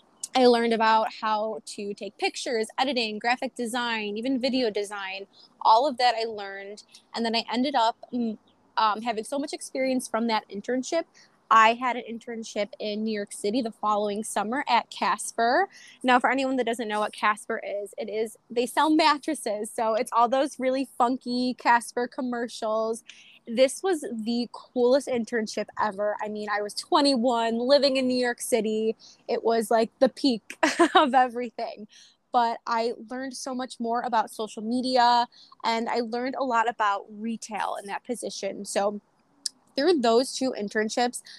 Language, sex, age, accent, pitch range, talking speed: English, female, 20-39, American, 215-250 Hz, 165 wpm